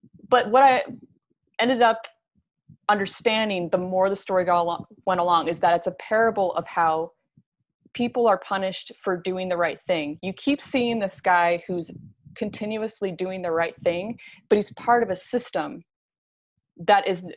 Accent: American